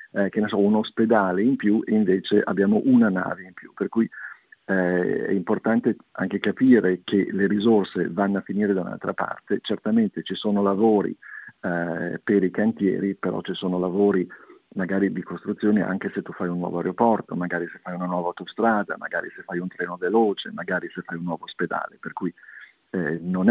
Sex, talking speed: male, 190 wpm